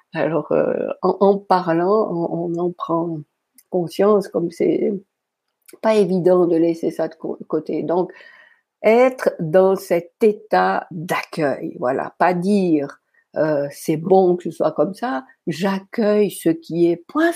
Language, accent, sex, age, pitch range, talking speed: French, French, female, 60-79, 170-245 Hz, 145 wpm